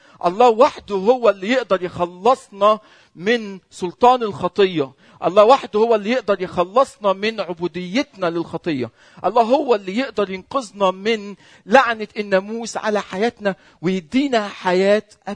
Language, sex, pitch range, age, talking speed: Arabic, male, 150-205 Hz, 50-69, 115 wpm